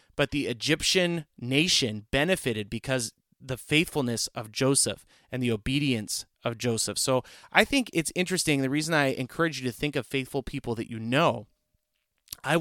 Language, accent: English, American